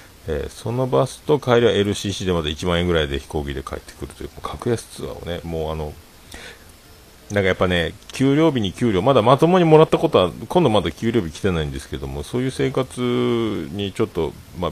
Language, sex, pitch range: Japanese, male, 80-110 Hz